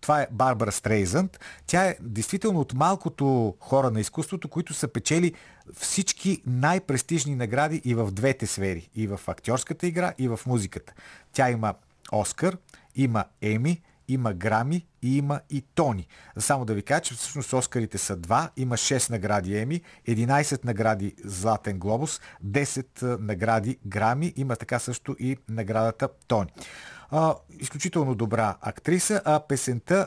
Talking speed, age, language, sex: 140 wpm, 50-69, Bulgarian, male